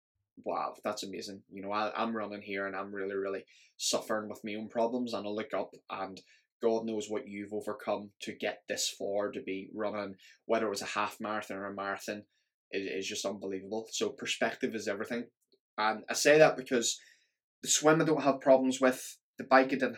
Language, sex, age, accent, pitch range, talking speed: English, male, 10-29, British, 105-125 Hz, 205 wpm